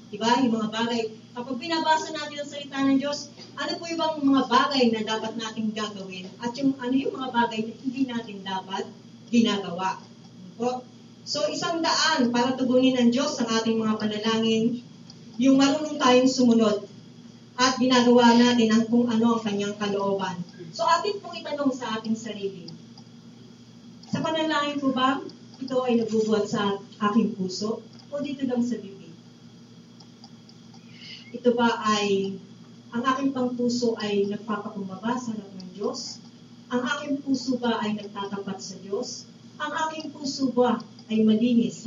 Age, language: 40-59, English